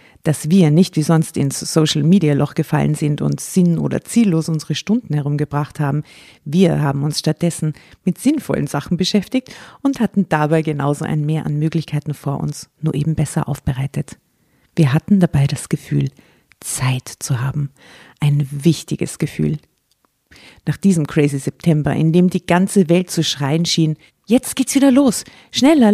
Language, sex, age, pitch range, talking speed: German, female, 50-69, 150-190 Hz, 155 wpm